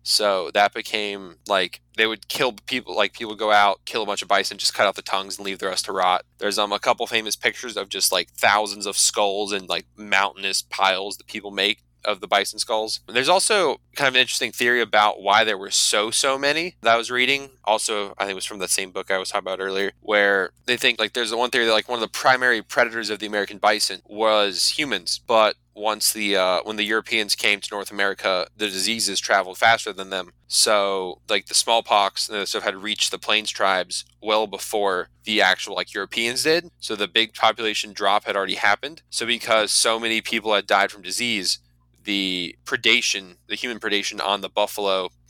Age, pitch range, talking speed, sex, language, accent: 20-39, 95-110 Hz, 220 wpm, male, English, American